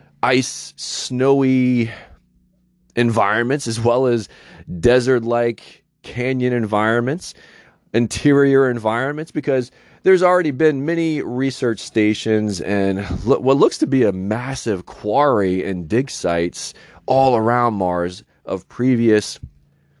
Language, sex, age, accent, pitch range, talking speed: English, male, 30-49, American, 100-135 Hz, 105 wpm